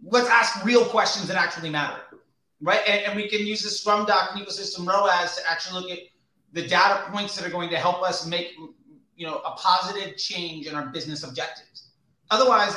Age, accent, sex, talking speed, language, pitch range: 30-49, American, male, 205 wpm, English, 160-200 Hz